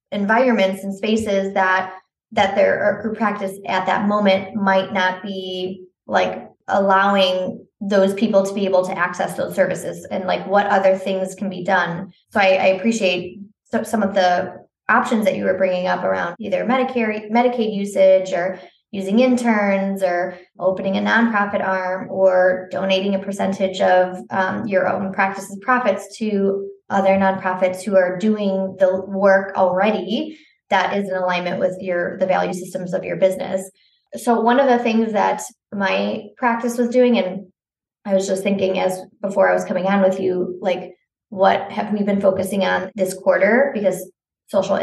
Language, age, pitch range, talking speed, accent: English, 20-39, 185-205 Hz, 165 wpm, American